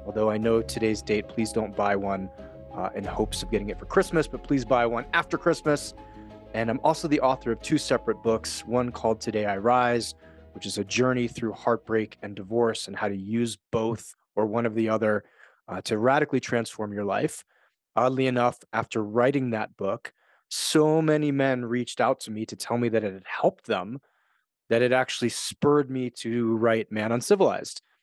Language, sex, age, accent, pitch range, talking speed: English, male, 30-49, American, 110-130 Hz, 195 wpm